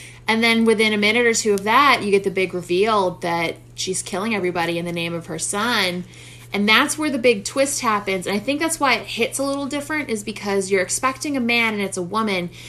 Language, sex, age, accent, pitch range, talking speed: English, female, 20-39, American, 165-210 Hz, 240 wpm